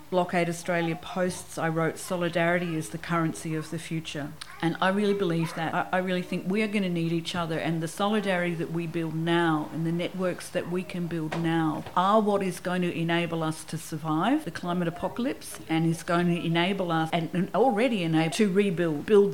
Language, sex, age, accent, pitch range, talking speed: English, female, 50-69, Australian, 155-180 Hz, 205 wpm